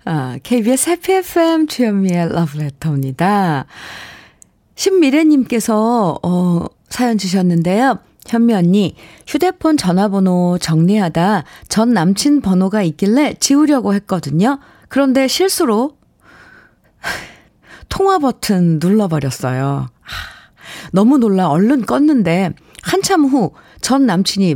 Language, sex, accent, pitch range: Korean, female, native, 170-260 Hz